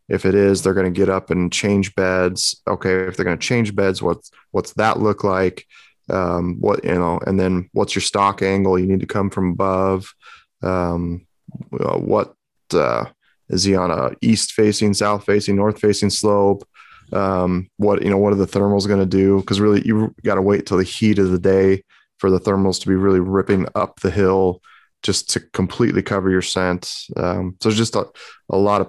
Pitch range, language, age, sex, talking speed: 95-105 Hz, English, 20-39, male, 210 wpm